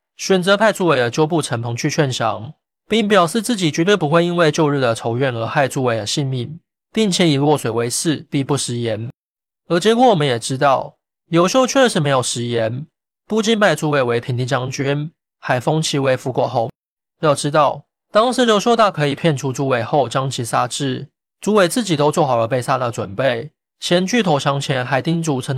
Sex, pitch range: male, 130-175 Hz